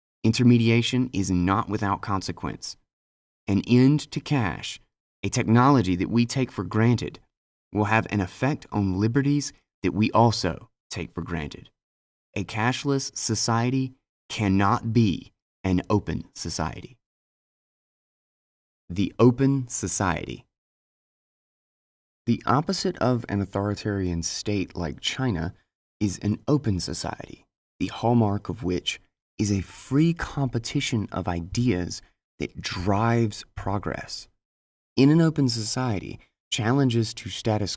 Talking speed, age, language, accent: 115 wpm, 30-49, English, American